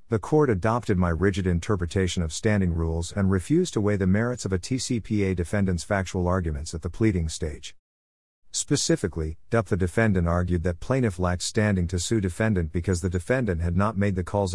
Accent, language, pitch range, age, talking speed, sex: American, English, 90-110 Hz, 50-69, 185 wpm, male